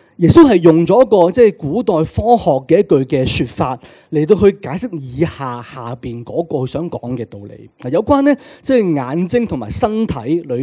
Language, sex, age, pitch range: Chinese, male, 30-49, 130-200 Hz